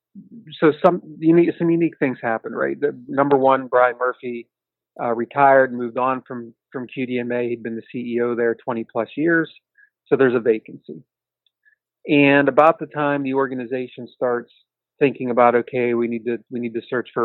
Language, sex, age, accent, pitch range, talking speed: English, male, 30-49, American, 120-145 Hz, 180 wpm